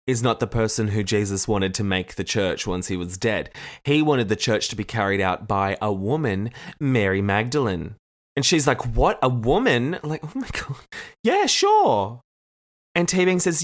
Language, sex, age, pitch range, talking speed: English, male, 20-39, 100-165 Hz, 195 wpm